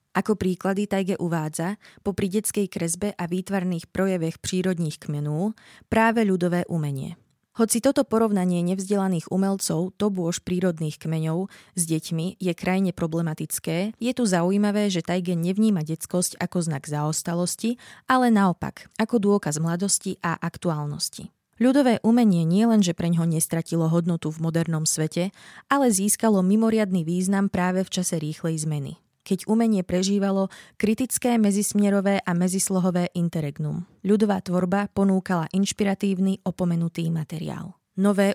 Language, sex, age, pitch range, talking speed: Slovak, female, 20-39, 170-205 Hz, 125 wpm